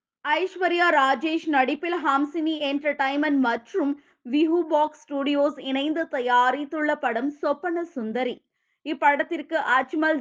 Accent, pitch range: native, 265-320 Hz